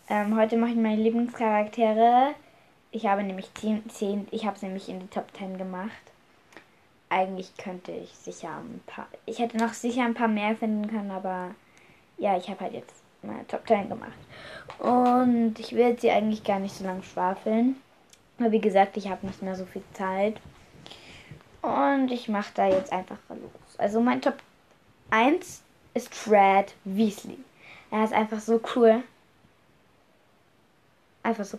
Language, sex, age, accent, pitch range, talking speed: German, female, 10-29, German, 195-245 Hz, 160 wpm